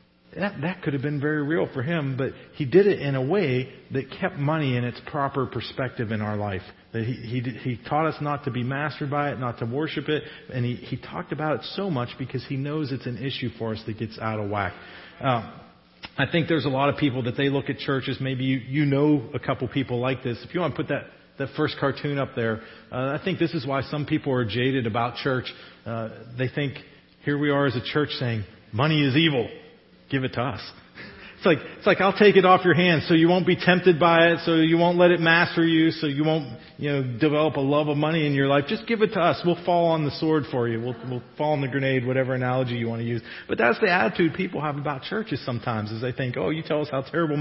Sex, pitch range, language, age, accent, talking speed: male, 125-155 Hz, English, 40-59, American, 260 wpm